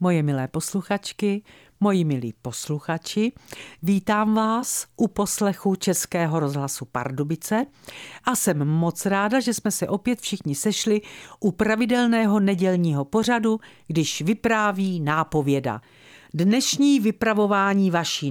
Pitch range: 150-225 Hz